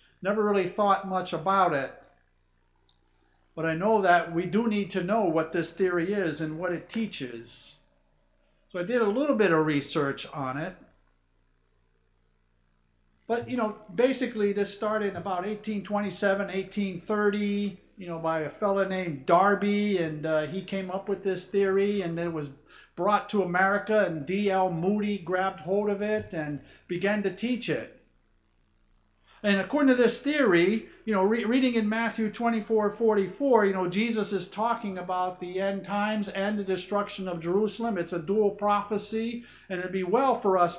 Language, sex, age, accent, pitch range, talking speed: English, male, 50-69, American, 155-205 Hz, 165 wpm